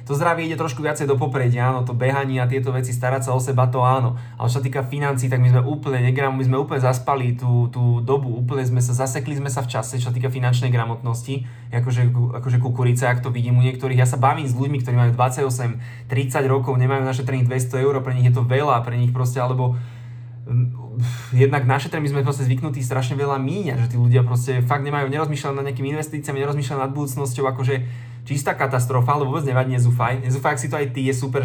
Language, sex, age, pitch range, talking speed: Slovak, male, 20-39, 120-135 Hz, 225 wpm